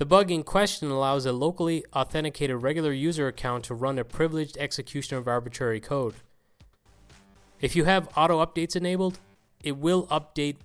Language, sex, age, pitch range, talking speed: English, male, 20-39, 120-155 Hz, 150 wpm